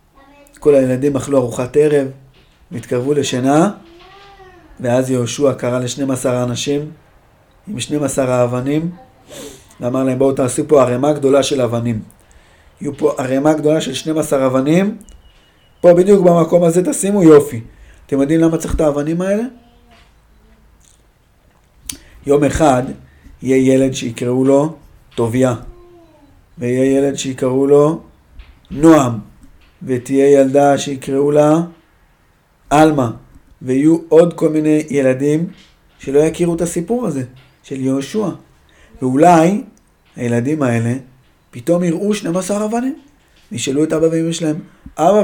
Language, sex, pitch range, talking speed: Hebrew, male, 130-175 Hz, 120 wpm